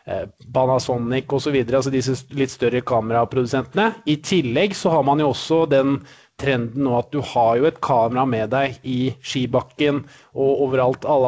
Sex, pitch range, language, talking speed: male, 130-145 Hz, English, 170 wpm